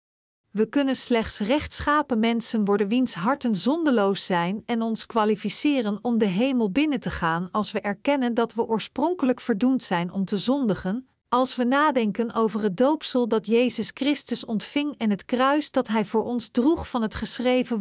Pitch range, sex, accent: 205-260 Hz, female, Dutch